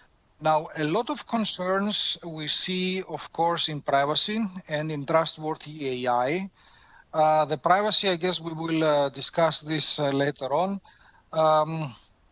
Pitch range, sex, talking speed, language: 140-175 Hz, male, 140 wpm, English